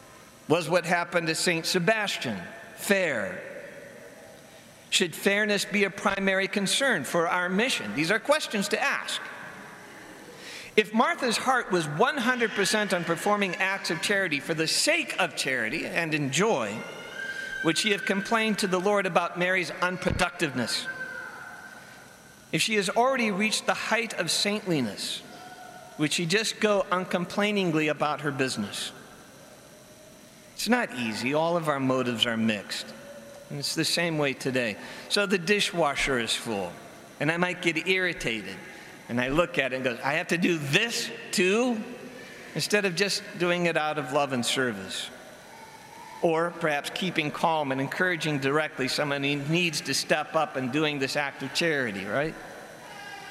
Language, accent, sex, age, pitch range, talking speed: English, American, male, 50-69, 150-210 Hz, 150 wpm